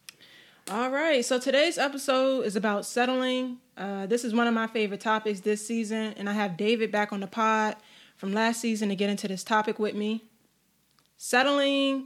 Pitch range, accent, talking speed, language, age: 195-225 Hz, American, 185 wpm, English, 10-29